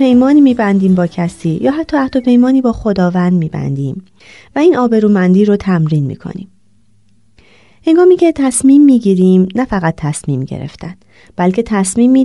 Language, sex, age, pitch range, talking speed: Persian, female, 30-49, 160-240 Hz, 130 wpm